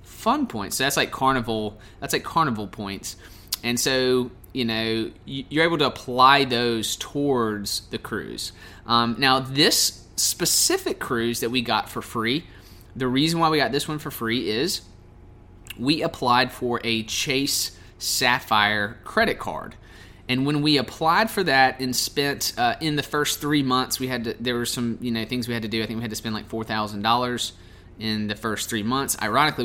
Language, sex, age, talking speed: English, male, 20-39, 185 wpm